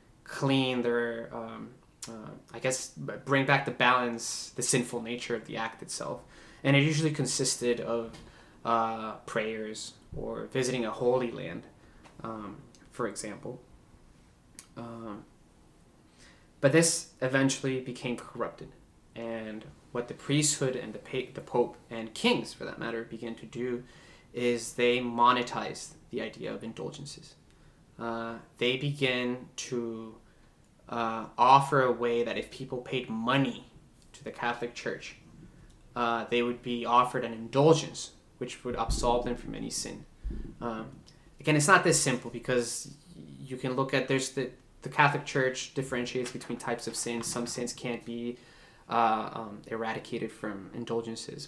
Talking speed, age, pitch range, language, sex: 145 wpm, 20-39, 115-130 Hz, English, male